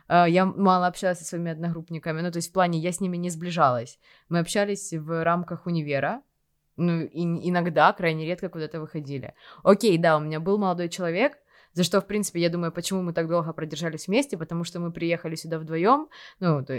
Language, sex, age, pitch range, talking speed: Russian, female, 20-39, 160-185 Hz, 195 wpm